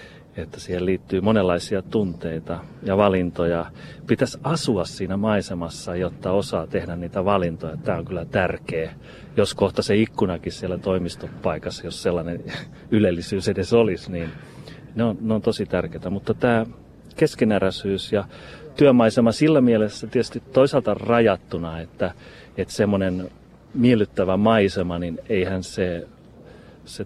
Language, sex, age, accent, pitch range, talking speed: Finnish, male, 30-49, native, 85-110 Hz, 125 wpm